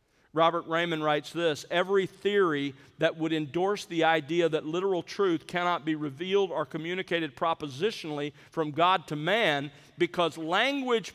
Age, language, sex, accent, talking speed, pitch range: 50-69, English, male, American, 140 wpm, 145-190 Hz